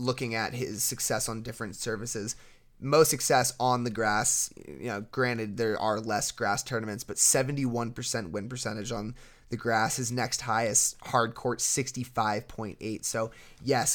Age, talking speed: 20-39, 145 wpm